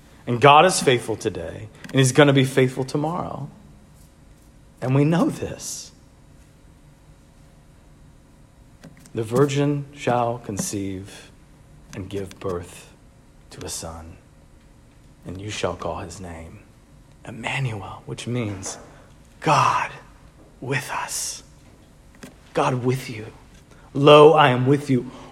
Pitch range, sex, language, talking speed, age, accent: 115-160 Hz, male, English, 110 wpm, 40-59, American